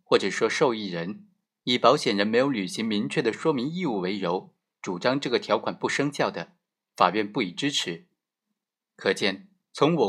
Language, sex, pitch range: Chinese, male, 110-180 Hz